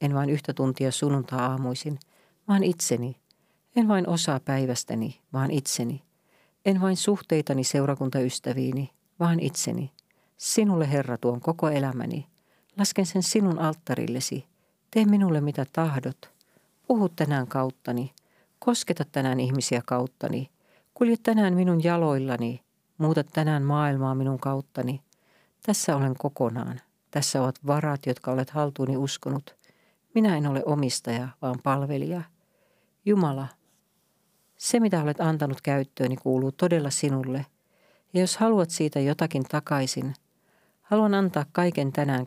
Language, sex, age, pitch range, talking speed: Finnish, female, 40-59, 135-180 Hz, 120 wpm